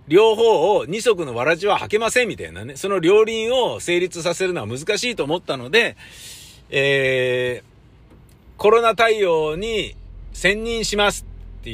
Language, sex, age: Japanese, male, 50-69